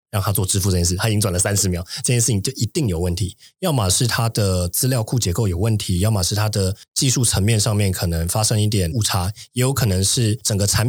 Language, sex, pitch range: Chinese, male, 95-115 Hz